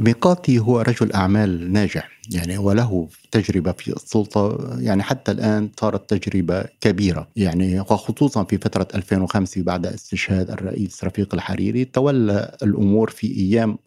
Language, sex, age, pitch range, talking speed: Arabic, male, 50-69, 95-120 Hz, 130 wpm